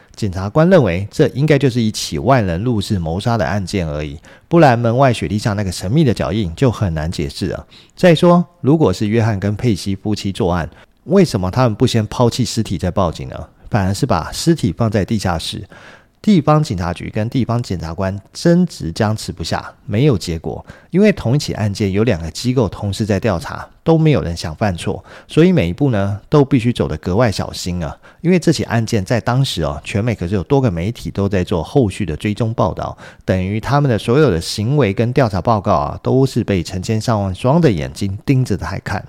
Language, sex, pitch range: Chinese, male, 95-130 Hz